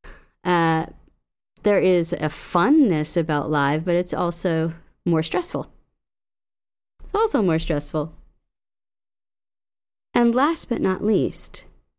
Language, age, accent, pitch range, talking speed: English, 40-59, American, 150-185 Hz, 105 wpm